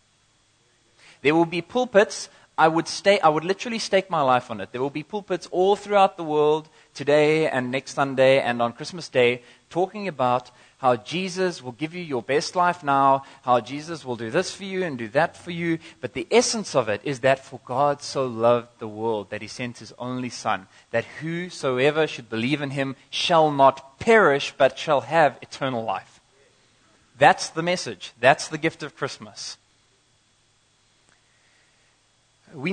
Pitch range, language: 120-165 Hz, English